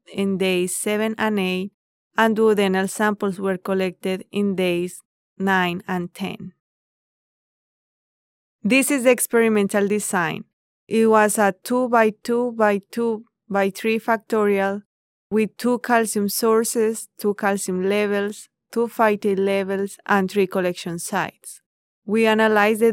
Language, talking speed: English, 125 wpm